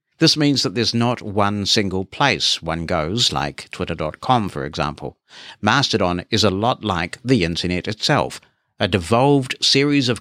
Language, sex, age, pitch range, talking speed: English, male, 60-79, 90-110 Hz, 155 wpm